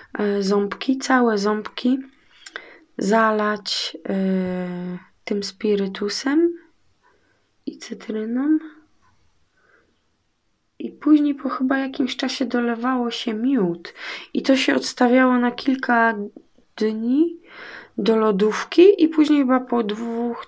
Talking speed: 90 wpm